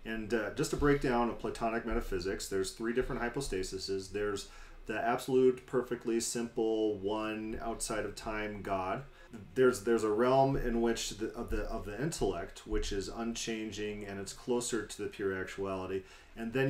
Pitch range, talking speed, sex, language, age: 100-125 Hz, 165 wpm, male, English, 30-49